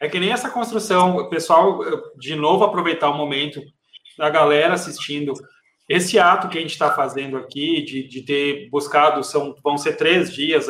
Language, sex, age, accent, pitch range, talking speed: Portuguese, male, 20-39, Brazilian, 145-180 Hz, 175 wpm